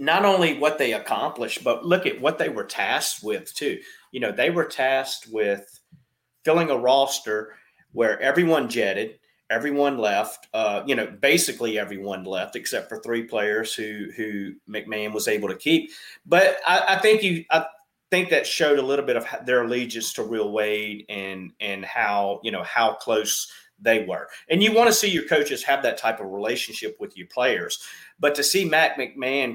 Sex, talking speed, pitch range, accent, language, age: male, 185 wpm, 110-155 Hz, American, English, 40-59